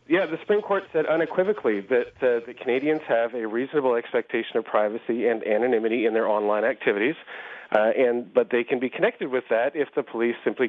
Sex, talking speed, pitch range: male, 195 wpm, 110-130 Hz